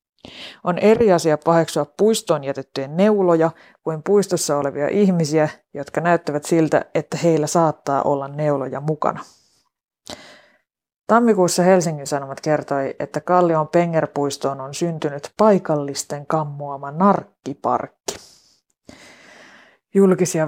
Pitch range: 150-175 Hz